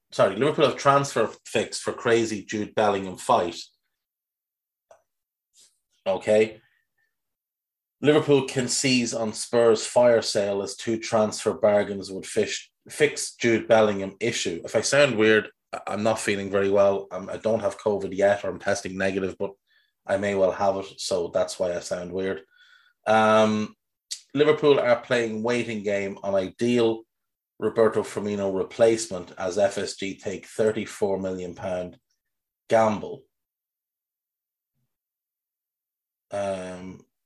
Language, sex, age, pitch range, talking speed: English, male, 30-49, 100-125 Hz, 120 wpm